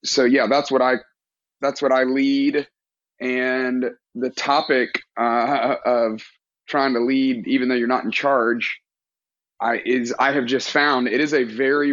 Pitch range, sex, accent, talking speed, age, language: 120-140 Hz, male, American, 165 wpm, 30-49, English